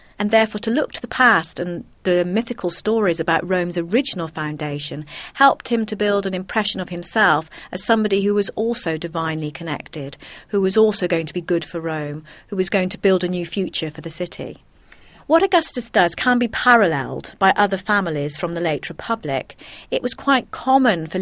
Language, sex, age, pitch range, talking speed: English, female, 40-59, 160-210 Hz, 190 wpm